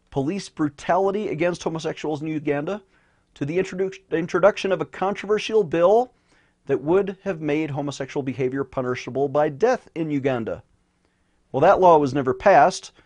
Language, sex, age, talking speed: English, male, 40-59, 140 wpm